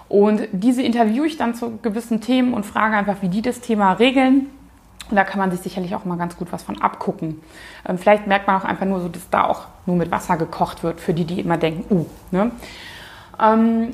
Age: 20-39